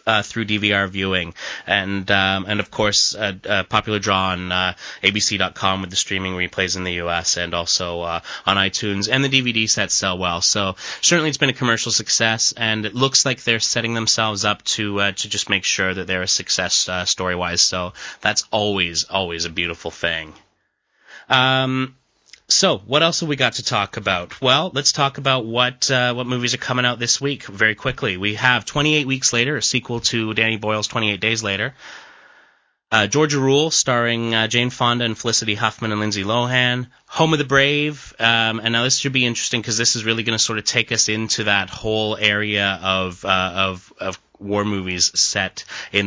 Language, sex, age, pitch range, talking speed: English, male, 30-49, 95-125 Hz, 200 wpm